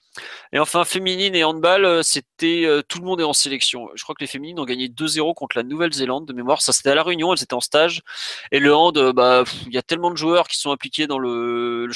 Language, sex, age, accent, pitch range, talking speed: French, male, 20-39, French, 130-165 Hz, 250 wpm